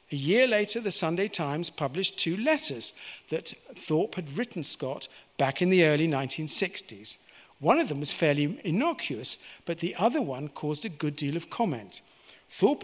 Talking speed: 170 wpm